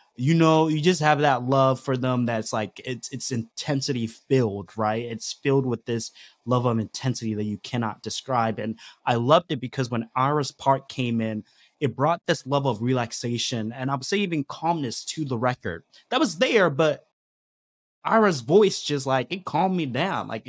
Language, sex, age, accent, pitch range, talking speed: English, male, 20-39, American, 110-150 Hz, 190 wpm